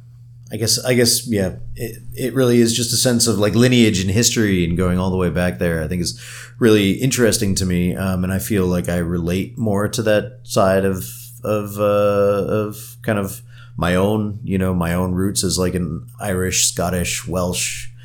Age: 30-49